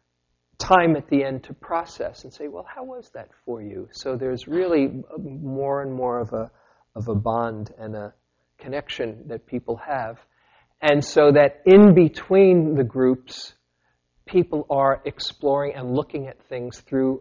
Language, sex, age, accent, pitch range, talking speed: English, male, 40-59, American, 115-145 Hz, 155 wpm